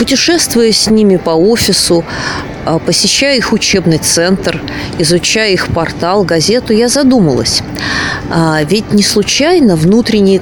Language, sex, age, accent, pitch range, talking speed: Russian, female, 20-39, native, 155-210 Hz, 110 wpm